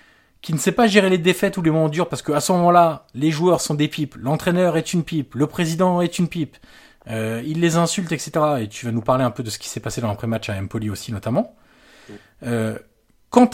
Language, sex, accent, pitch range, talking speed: French, male, French, 125-180 Hz, 245 wpm